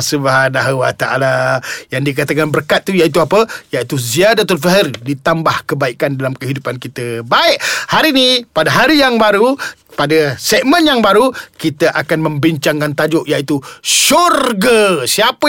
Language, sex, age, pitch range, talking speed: Malay, male, 40-59, 160-220 Hz, 135 wpm